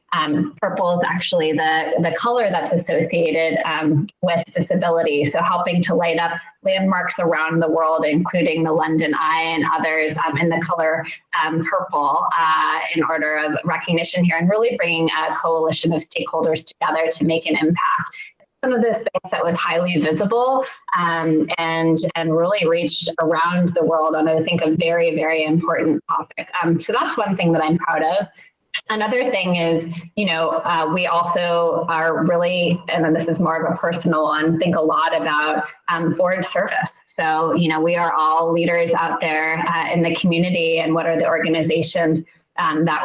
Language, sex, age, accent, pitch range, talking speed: English, female, 20-39, American, 160-170 Hz, 180 wpm